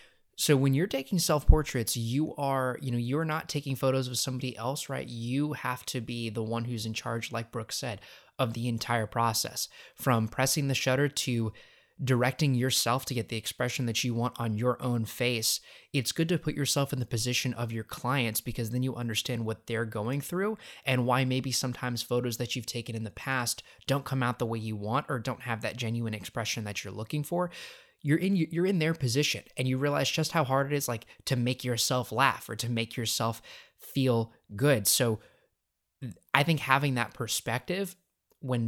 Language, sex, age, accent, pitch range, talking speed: English, male, 20-39, American, 115-135 Hz, 200 wpm